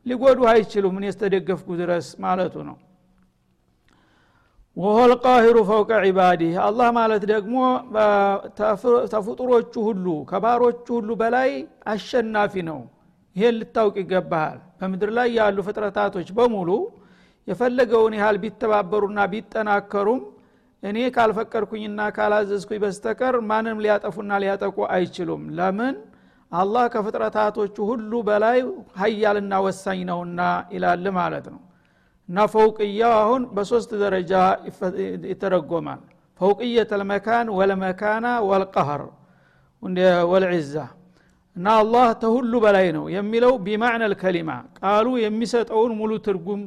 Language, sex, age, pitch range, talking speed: Amharic, male, 60-79, 190-230 Hz, 95 wpm